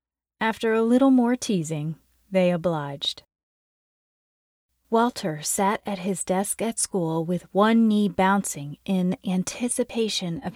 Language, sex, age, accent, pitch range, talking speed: English, female, 30-49, American, 175-215 Hz, 120 wpm